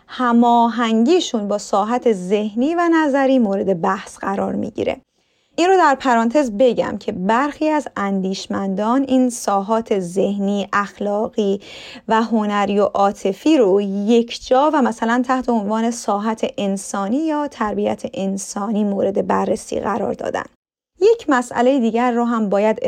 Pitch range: 210-275 Hz